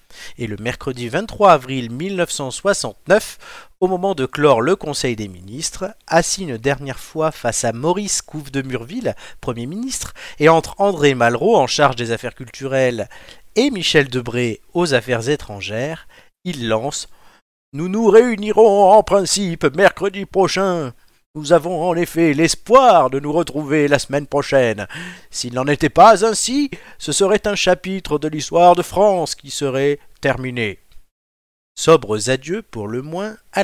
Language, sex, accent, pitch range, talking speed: French, male, French, 125-180 Hz, 150 wpm